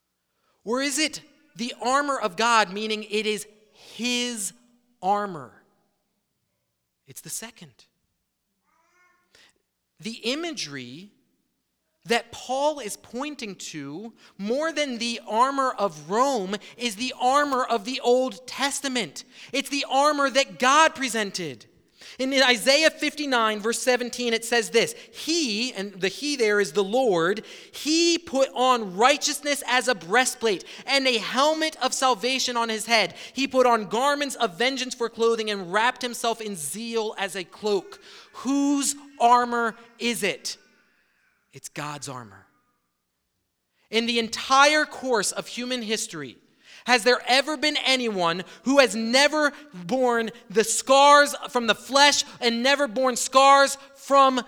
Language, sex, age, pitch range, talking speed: English, male, 30-49, 210-270 Hz, 135 wpm